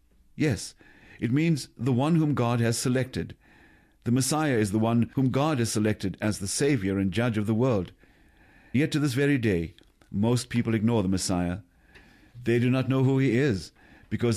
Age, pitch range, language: 50-69, 100-130 Hz, English